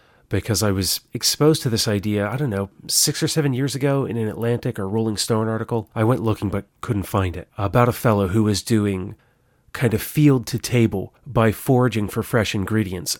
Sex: male